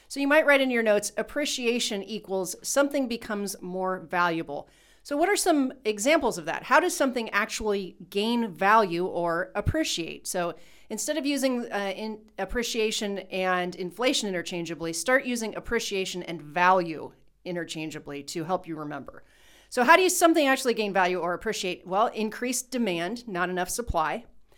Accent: American